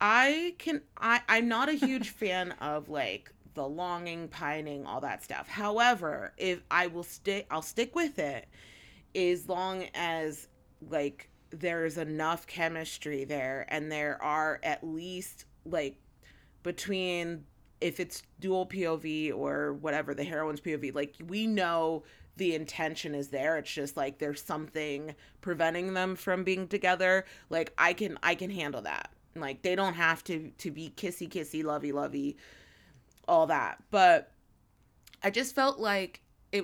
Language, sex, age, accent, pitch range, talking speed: English, female, 30-49, American, 155-190 Hz, 150 wpm